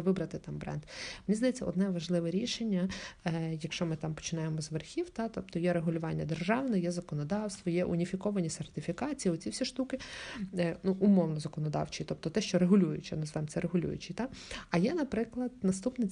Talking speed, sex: 155 wpm, female